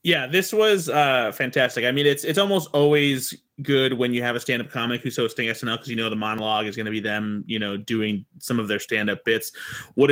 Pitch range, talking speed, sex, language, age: 115-135 Hz, 235 wpm, male, English, 30-49